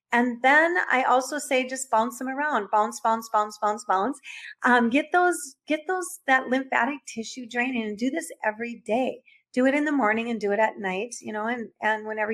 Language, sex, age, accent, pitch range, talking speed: English, female, 40-59, American, 205-250 Hz, 210 wpm